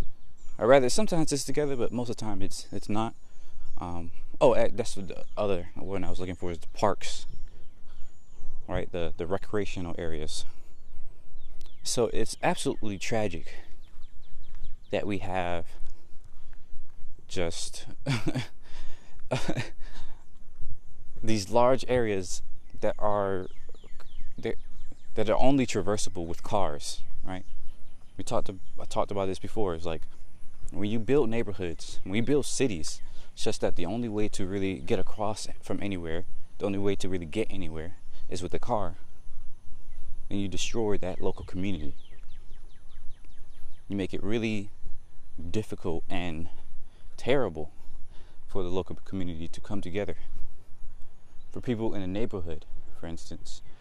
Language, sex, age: English, male, 20-39